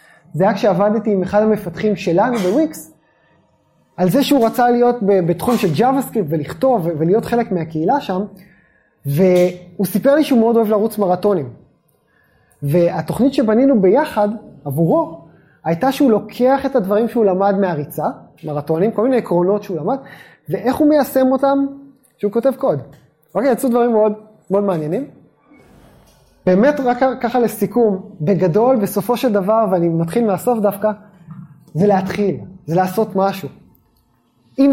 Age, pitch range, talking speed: 20-39, 175-235 Hz, 135 wpm